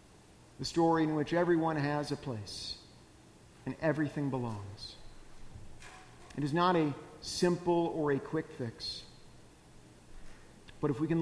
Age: 50-69